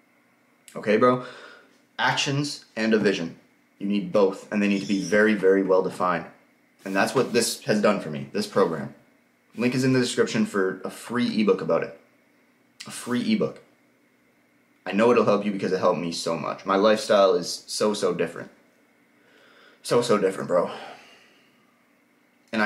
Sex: male